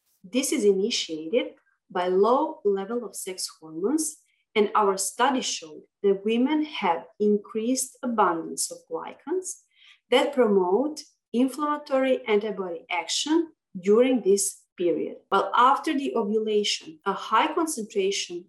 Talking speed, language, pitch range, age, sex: 115 wpm, English, 200-265 Hz, 30-49, female